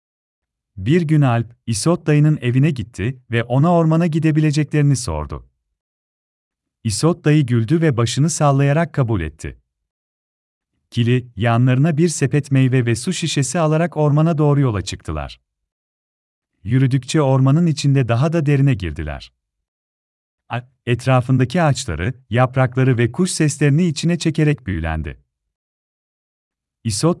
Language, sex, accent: Turkish, male, native